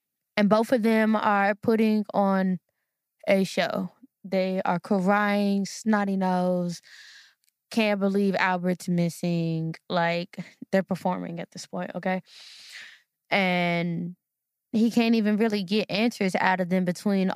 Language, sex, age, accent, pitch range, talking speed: English, female, 10-29, American, 180-220 Hz, 125 wpm